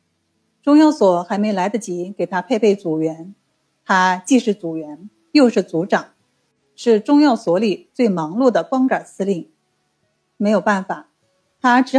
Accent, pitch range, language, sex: native, 180-235 Hz, Chinese, female